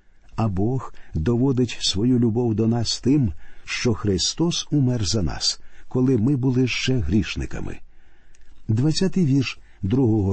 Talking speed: 120 wpm